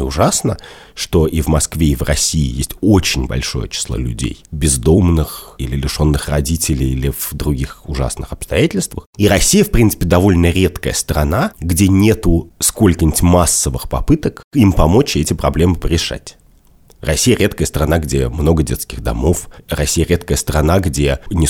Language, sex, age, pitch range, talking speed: Russian, male, 30-49, 75-95 Hz, 140 wpm